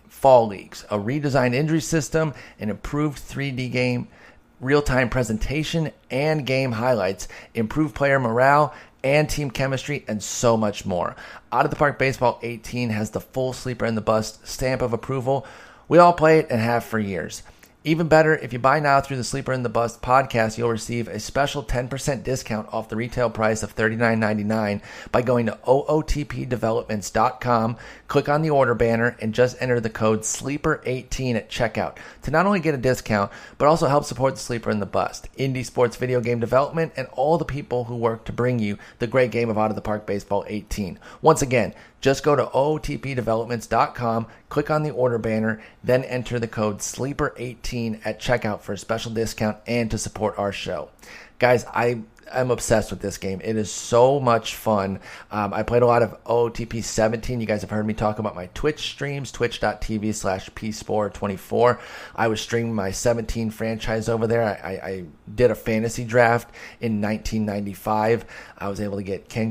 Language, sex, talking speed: English, male, 185 wpm